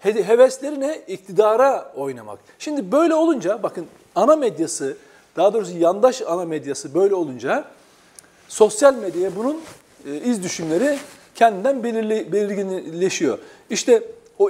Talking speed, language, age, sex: 110 wpm, Turkish, 40-59, male